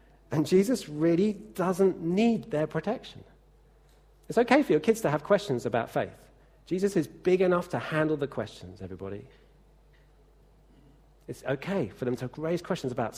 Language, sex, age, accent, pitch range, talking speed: English, male, 40-59, British, 135-180 Hz, 155 wpm